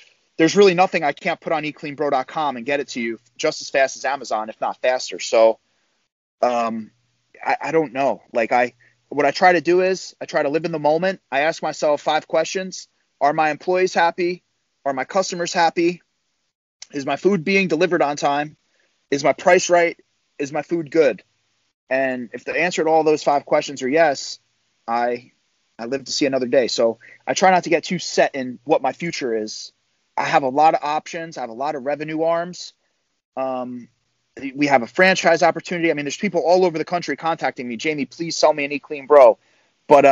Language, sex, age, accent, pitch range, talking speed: English, male, 30-49, American, 125-165 Hz, 210 wpm